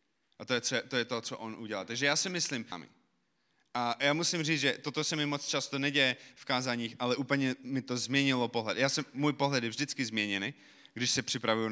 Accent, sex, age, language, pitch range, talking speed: native, male, 30-49, Czech, 120-150 Hz, 215 wpm